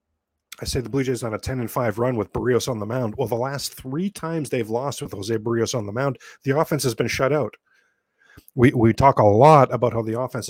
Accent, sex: American, male